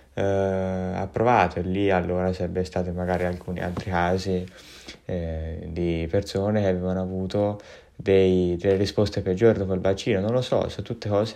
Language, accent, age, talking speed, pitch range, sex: Italian, native, 20-39, 160 wpm, 90-105 Hz, male